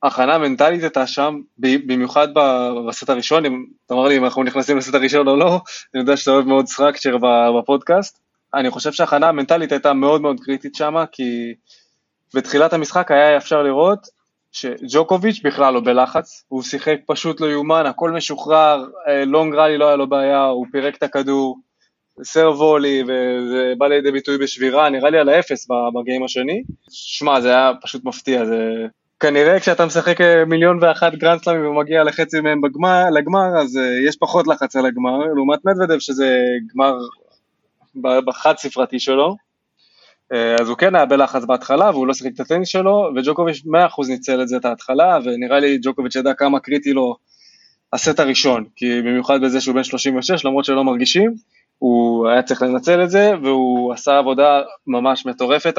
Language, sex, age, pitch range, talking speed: Hebrew, male, 20-39, 130-155 Hz, 155 wpm